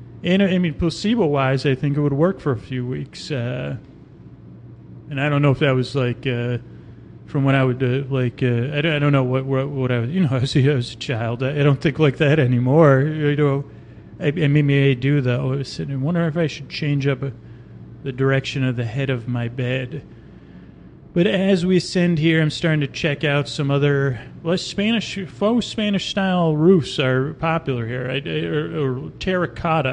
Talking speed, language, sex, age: 205 wpm, English, male, 30-49